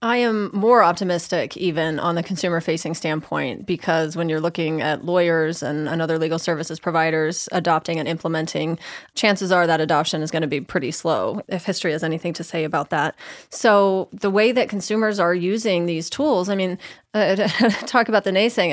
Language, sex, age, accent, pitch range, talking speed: English, female, 30-49, American, 165-195 Hz, 180 wpm